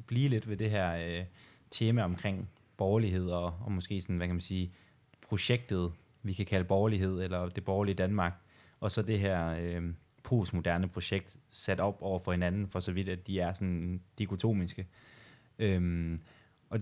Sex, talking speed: male, 160 wpm